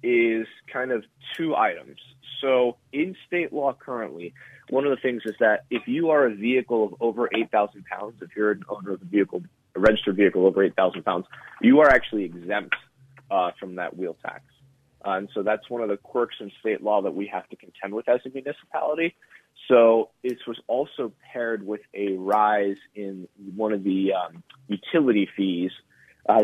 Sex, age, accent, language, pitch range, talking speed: male, 30-49, American, English, 100-125 Hz, 190 wpm